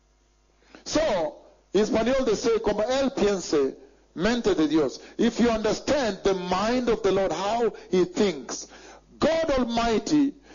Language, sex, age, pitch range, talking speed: English, male, 60-79, 175-265 Hz, 130 wpm